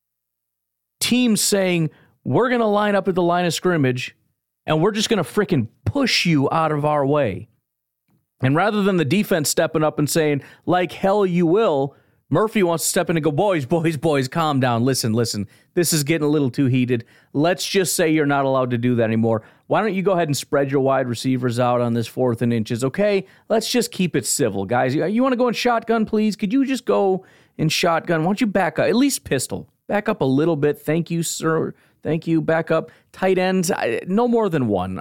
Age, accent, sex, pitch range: 40-59, American, male, 125-190 Hz